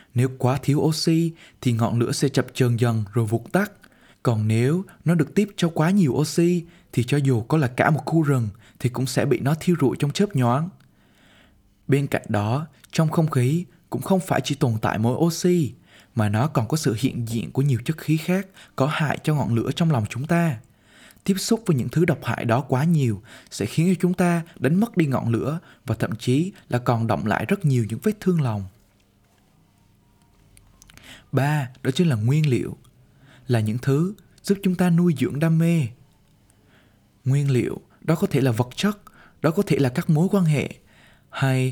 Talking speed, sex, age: 205 wpm, male, 20-39